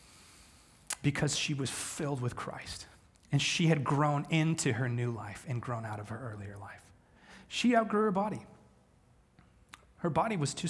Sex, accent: male, American